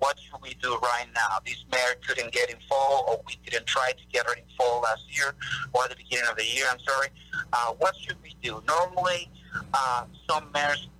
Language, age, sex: English, 50-69, male